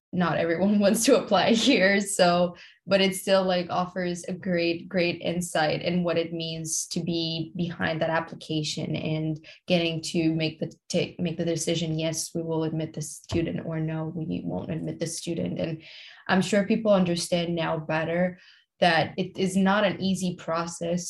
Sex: female